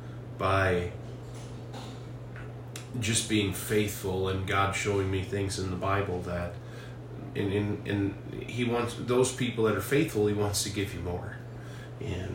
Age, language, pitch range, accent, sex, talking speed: 40-59, English, 100-120 Hz, American, male, 140 wpm